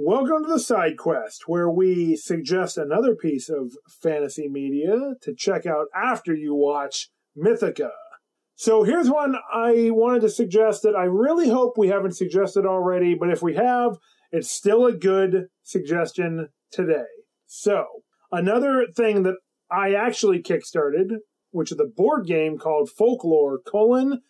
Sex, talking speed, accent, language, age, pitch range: male, 150 wpm, American, English, 30-49, 170-220 Hz